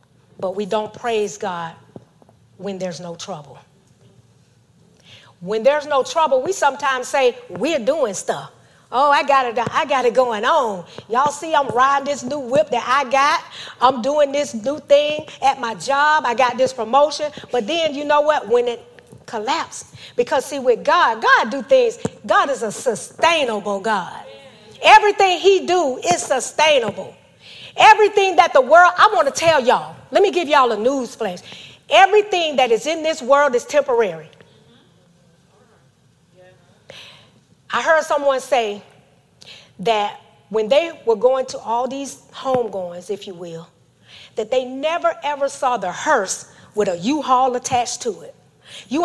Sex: female